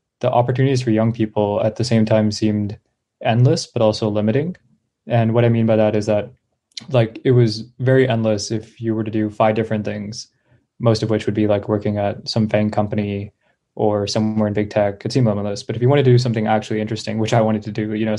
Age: 20-39